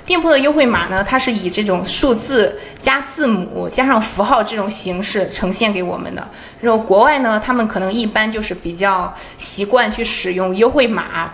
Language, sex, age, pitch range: Chinese, female, 20-39, 190-235 Hz